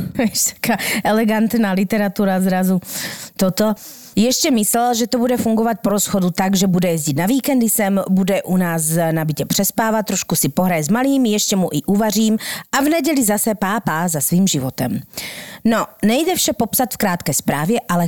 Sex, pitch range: female, 175-215 Hz